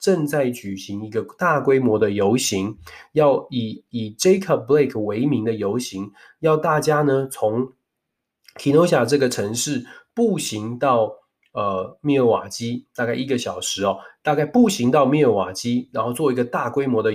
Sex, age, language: male, 20-39, Chinese